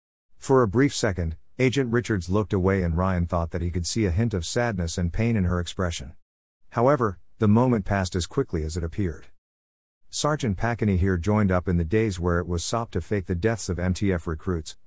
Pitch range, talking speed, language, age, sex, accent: 85-115 Hz, 210 wpm, English, 50-69, male, American